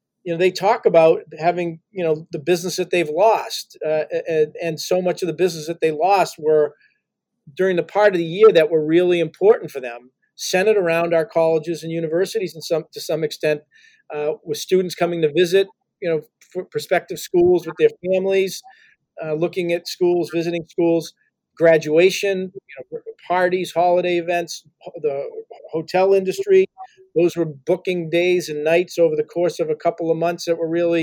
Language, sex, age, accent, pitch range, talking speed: English, male, 40-59, American, 160-195 Hz, 175 wpm